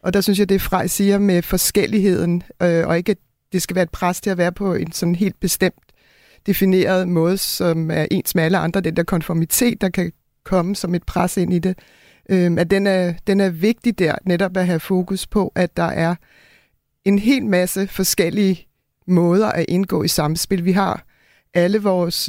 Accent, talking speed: native, 205 wpm